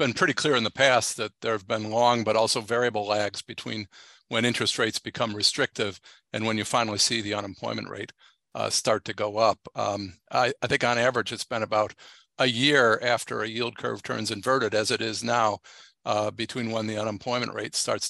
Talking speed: 205 wpm